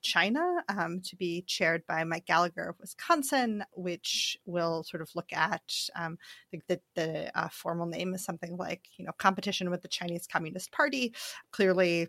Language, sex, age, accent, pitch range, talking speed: English, female, 30-49, American, 180-230 Hz, 180 wpm